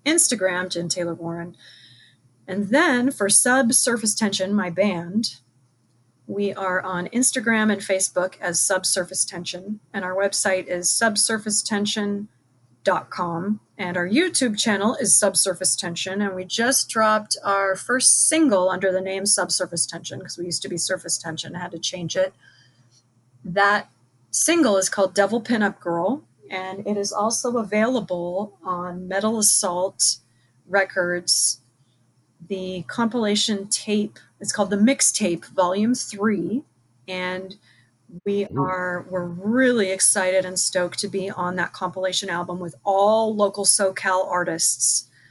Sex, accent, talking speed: female, American, 130 wpm